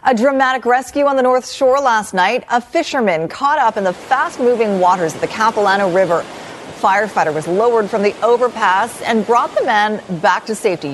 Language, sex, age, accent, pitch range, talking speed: English, female, 40-59, American, 185-260 Hz, 190 wpm